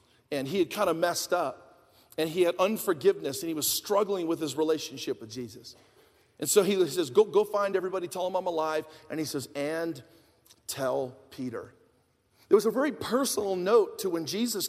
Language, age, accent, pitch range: English, 40-59, American, 185-260 Hz